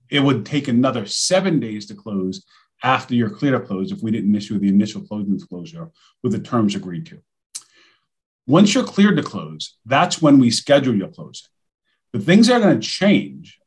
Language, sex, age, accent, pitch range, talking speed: English, male, 40-59, American, 110-155 Hz, 190 wpm